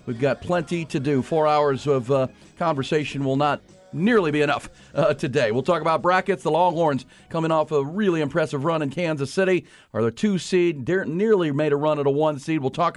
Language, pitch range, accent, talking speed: English, 130-160 Hz, American, 215 wpm